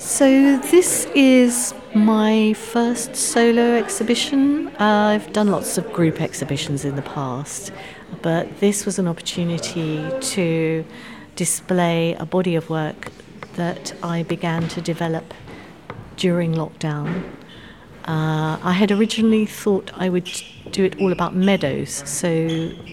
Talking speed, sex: 125 wpm, female